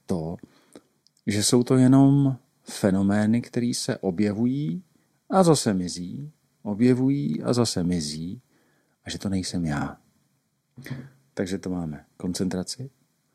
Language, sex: Czech, male